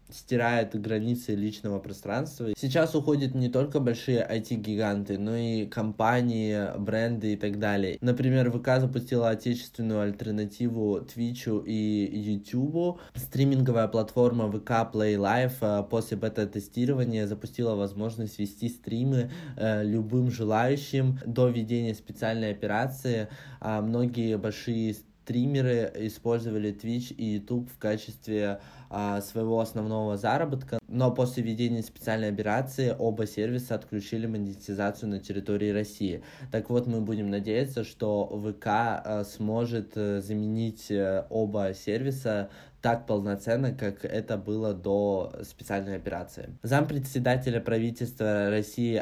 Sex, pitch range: male, 105-120 Hz